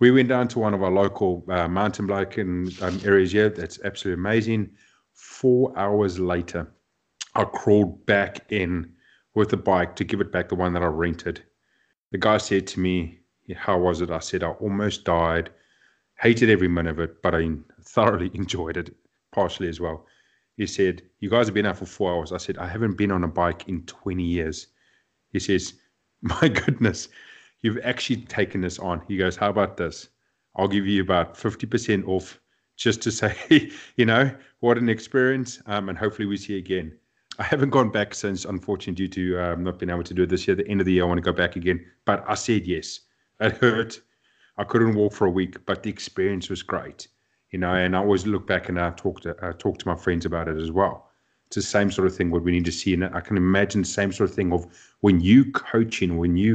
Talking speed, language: 225 wpm, English